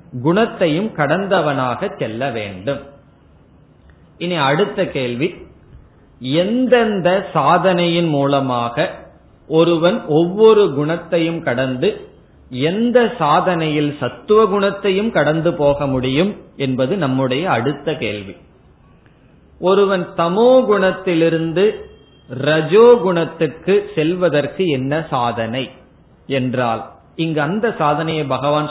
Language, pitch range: Tamil, 140-185 Hz